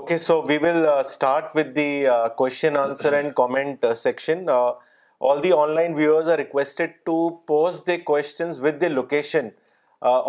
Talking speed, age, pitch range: 175 wpm, 30-49, 140-180 Hz